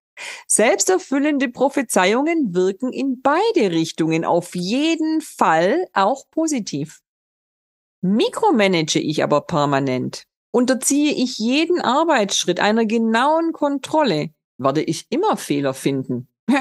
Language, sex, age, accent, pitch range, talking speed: German, female, 50-69, German, 175-260 Hz, 100 wpm